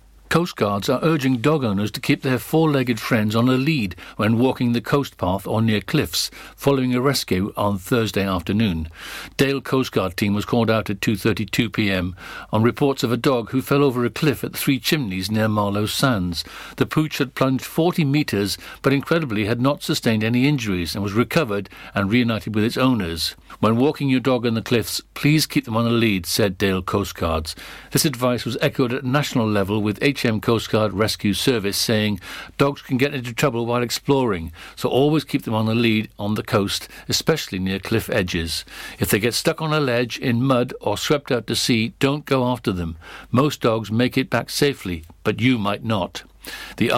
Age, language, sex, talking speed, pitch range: 60-79, English, male, 200 wpm, 105-135 Hz